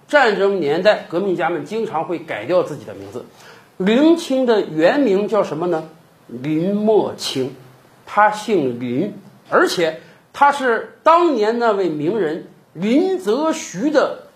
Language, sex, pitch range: Chinese, male, 190-300 Hz